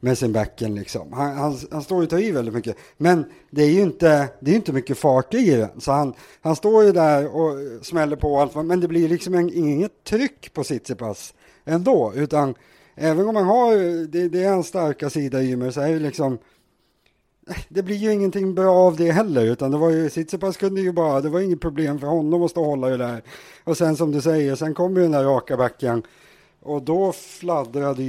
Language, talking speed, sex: English, 225 wpm, male